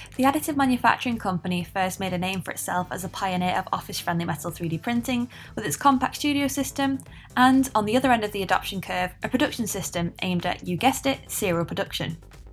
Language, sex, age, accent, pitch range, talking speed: English, female, 10-29, British, 185-255 Hz, 200 wpm